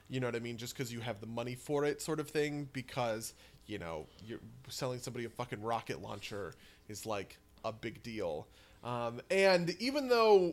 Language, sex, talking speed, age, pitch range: English, male, 200 wpm, 20-39, 115-160 Hz